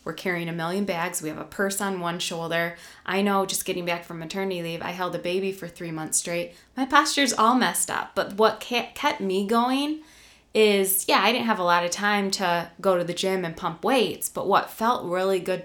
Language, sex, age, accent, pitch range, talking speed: English, female, 20-39, American, 170-220 Hz, 230 wpm